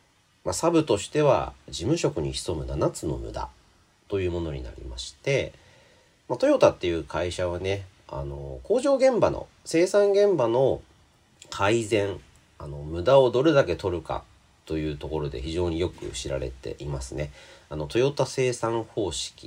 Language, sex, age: Japanese, male, 40-59